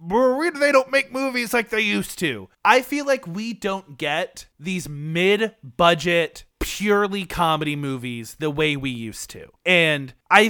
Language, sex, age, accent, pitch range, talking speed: English, male, 20-39, American, 150-210 Hz, 150 wpm